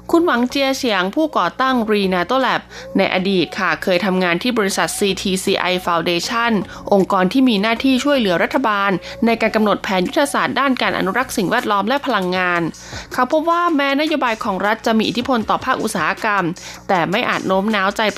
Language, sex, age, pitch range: Thai, female, 20-39, 185-250 Hz